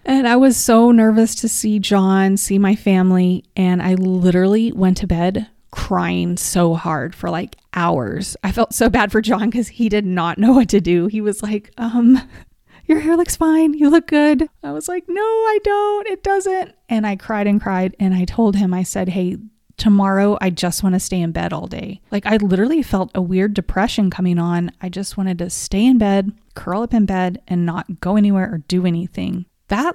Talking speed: 210 wpm